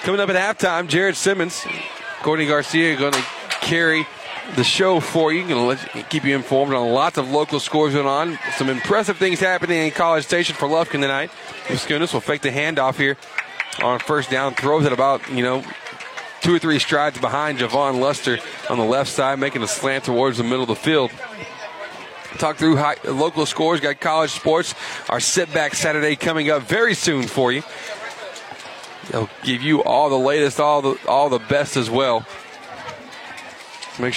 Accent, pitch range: American, 130-155 Hz